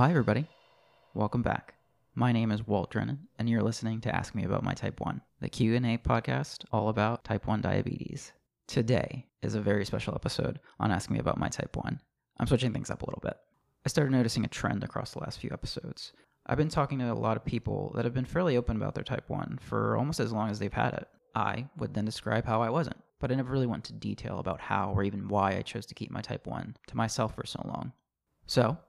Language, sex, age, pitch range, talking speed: English, male, 20-39, 110-135 Hz, 235 wpm